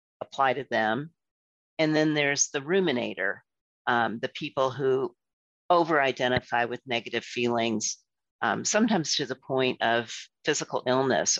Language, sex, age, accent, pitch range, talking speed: English, female, 50-69, American, 130-175 Hz, 125 wpm